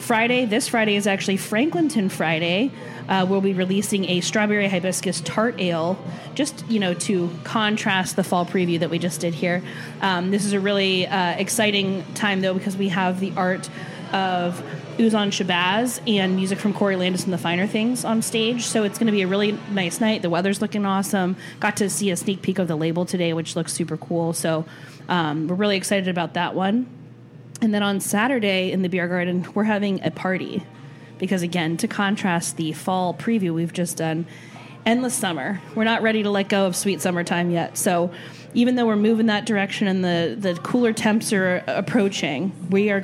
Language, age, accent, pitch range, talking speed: English, 20-39, American, 175-210 Hz, 200 wpm